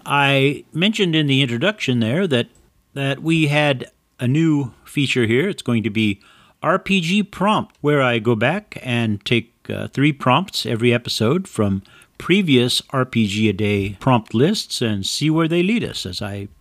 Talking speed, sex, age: 165 wpm, male, 50-69